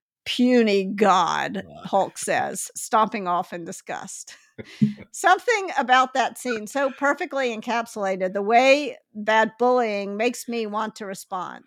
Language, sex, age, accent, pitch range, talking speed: English, female, 50-69, American, 205-255 Hz, 125 wpm